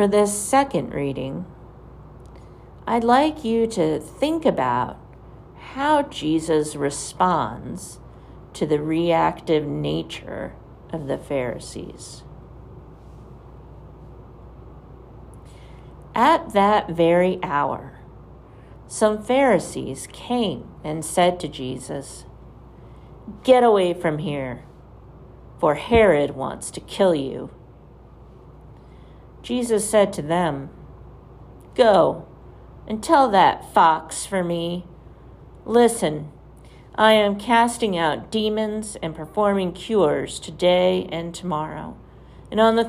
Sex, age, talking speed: female, 50-69, 95 wpm